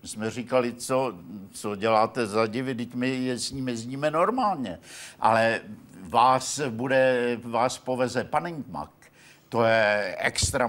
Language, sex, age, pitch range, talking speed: Czech, male, 60-79, 120-140 Hz, 135 wpm